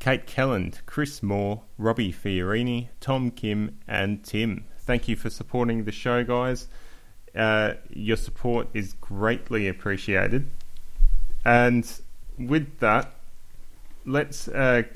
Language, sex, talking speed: English, male, 110 wpm